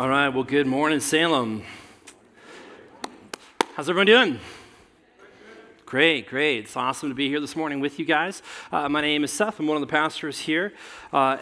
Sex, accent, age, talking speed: male, American, 30-49, 175 wpm